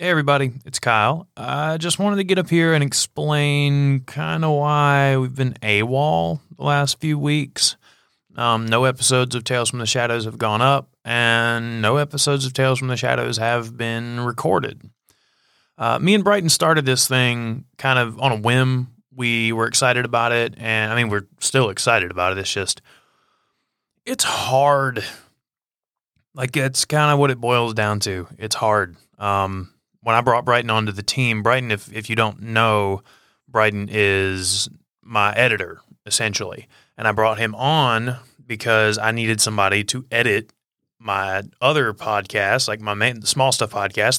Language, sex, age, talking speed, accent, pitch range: English, male, 20-39, 165 wpm, American, 110-135 Hz